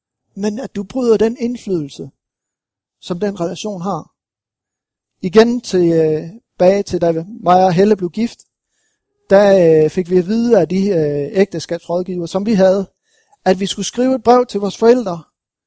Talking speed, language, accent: 155 wpm, Danish, native